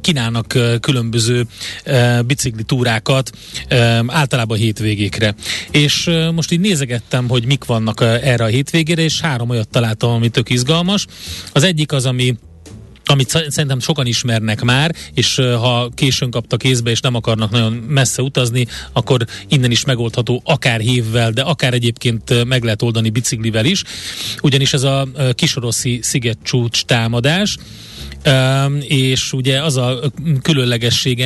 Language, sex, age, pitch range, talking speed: Hungarian, male, 30-49, 115-140 Hz, 135 wpm